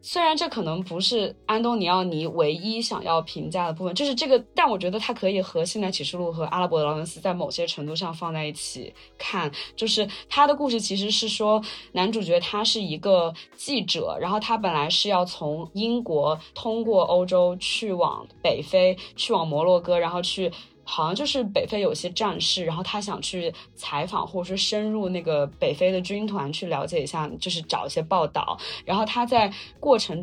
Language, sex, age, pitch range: Chinese, female, 20-39, 170-220 Hz